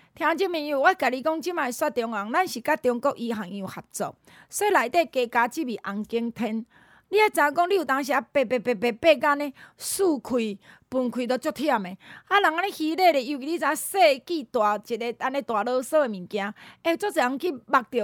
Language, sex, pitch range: Chinese, female, 235-325 Hz